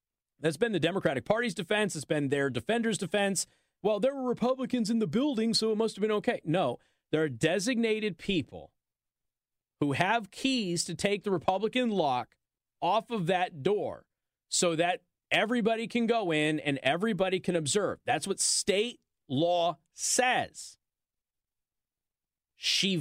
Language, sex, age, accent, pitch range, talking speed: English, male, 40-59, American, 155-225 Hz, 150 wpm